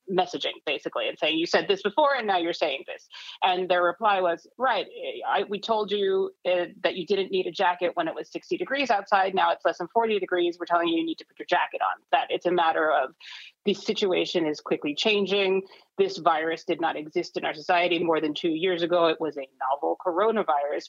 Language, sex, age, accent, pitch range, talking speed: English, female, 30-49, American, 170-205 Hz, 225 wpm